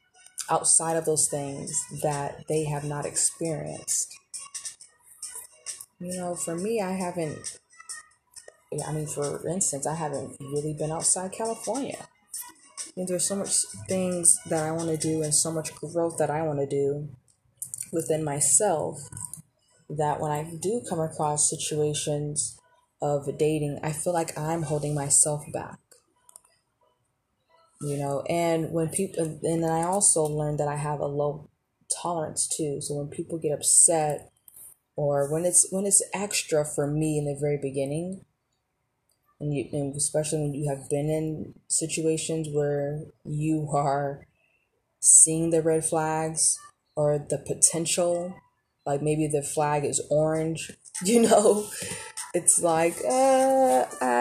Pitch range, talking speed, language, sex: 145-170 Hz, 140 wpm, English, female